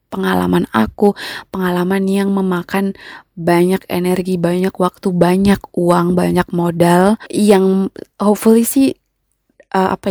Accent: native